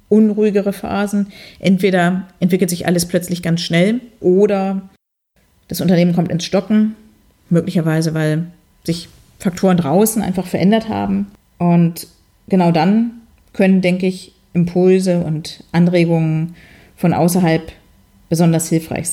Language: German